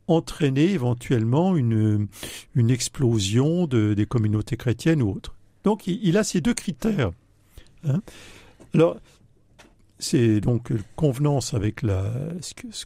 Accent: French